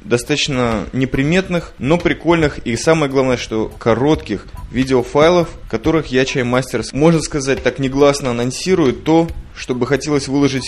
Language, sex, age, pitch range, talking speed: Russian, male, 20-39, 120-150 Hz, 135 wpm